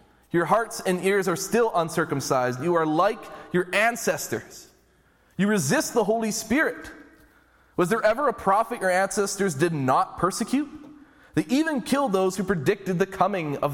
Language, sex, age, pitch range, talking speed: English, male, 20-39, 125-185 Hz, 155 wpm